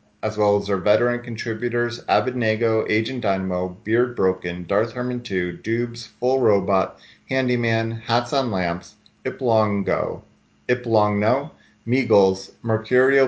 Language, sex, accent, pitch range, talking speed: English, male, American, 95-115 Hz, 115 wpm